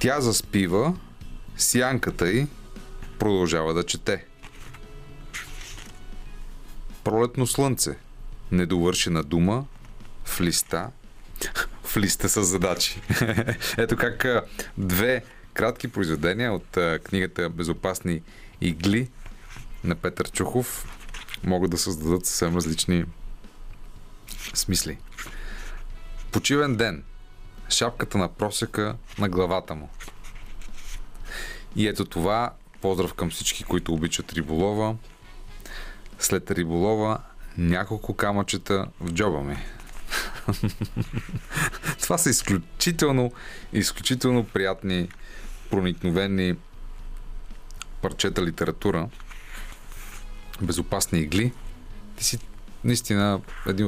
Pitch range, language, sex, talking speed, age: 90-110 Hz, Bulgarian, male, 80 wpm, 30-49